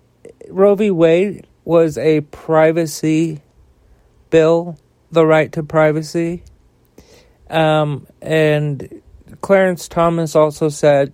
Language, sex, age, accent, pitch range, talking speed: English, male, 40-59, American, 140-155 Hz, 90 wpm